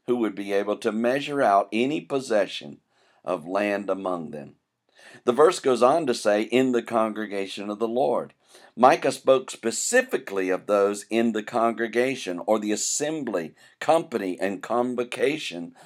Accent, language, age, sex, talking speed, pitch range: American, English, 50-69, male, 145 wpm, 105-140 Hz